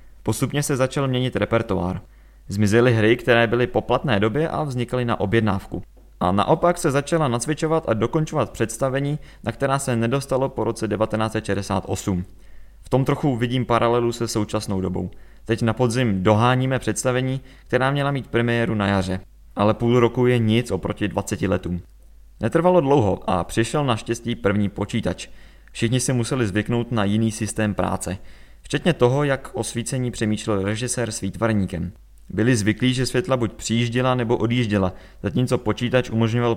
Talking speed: 150 wpm